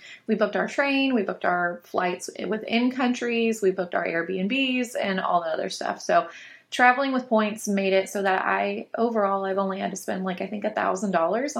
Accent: American